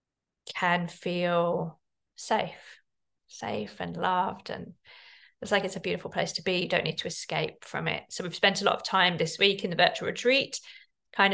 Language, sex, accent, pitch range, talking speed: English, female, British, 185-230 Hz, 190 wpm